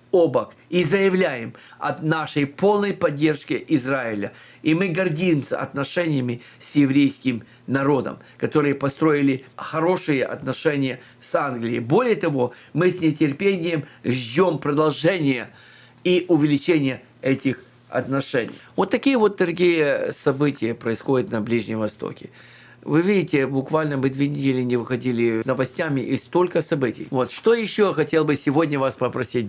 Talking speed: 125 wpm